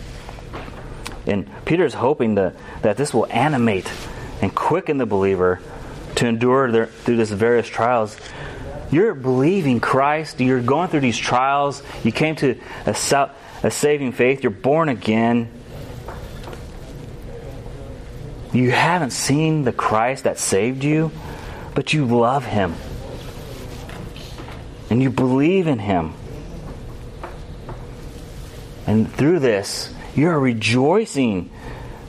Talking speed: 110 wpm